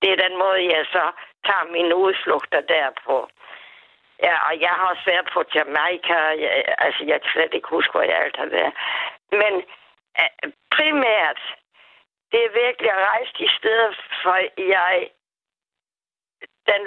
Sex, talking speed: female, 150 wpm